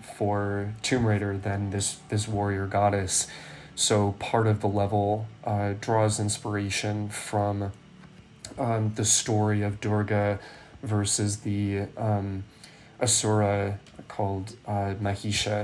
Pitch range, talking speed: 100-110 Hz, 110 wpm